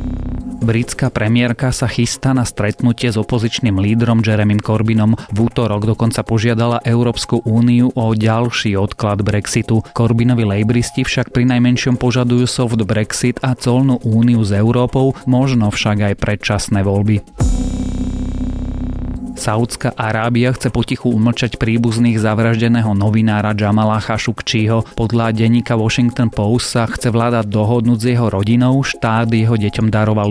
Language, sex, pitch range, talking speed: Slovak, male, 105-120 Hz, 125 wpm